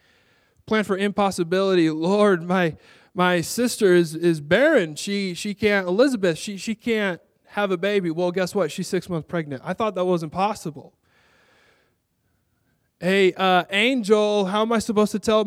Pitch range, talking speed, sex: 150-210 Hz, 160 wpm, male